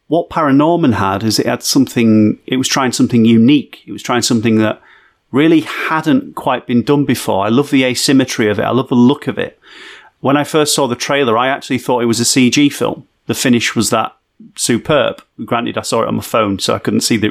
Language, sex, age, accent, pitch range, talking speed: English, male, 40-59, British, 110-140 Hz, 230 wpm